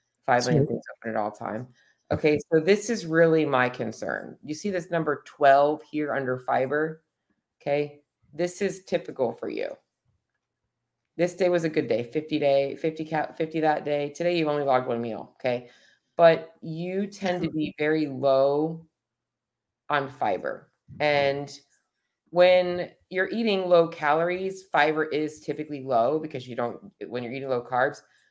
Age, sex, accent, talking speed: 30-49, female, American, 150 wpm